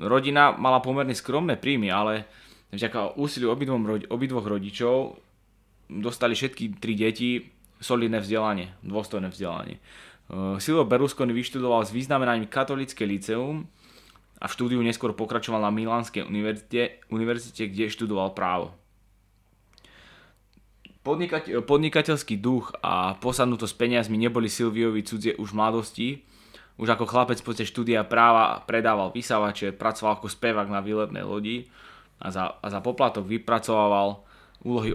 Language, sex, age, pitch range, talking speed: English, male, 20-39, 100-120 Hz, 120 wpm